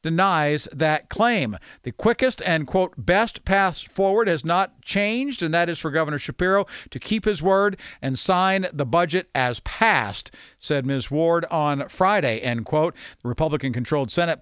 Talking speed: 160 wpm